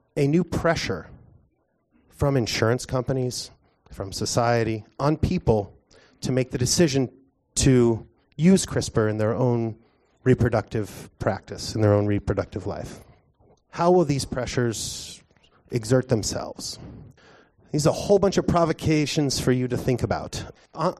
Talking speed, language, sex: 130 wpm, English, male